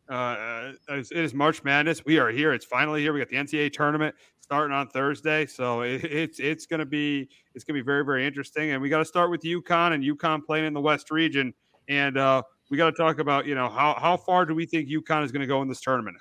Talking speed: 245 wpm